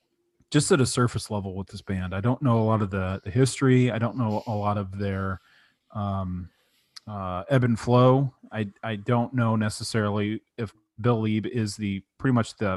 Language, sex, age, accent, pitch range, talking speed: English, male, 30-49, American, 105-120 Hz, 195 wpm